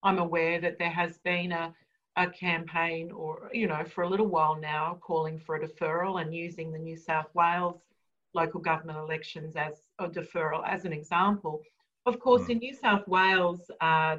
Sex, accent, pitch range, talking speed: female, Australian, 160-205 Hz, 180 wpm